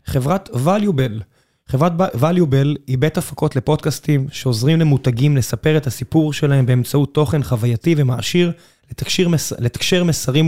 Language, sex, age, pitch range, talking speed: Hebrew, male, 20-39, 130-150 Hz, 115 wpm